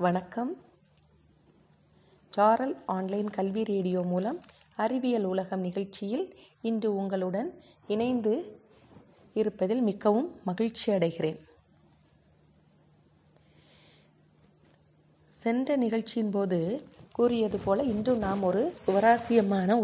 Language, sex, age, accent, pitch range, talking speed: Tamil, female, 30-49, native, 185-250 Hz, 75 wpm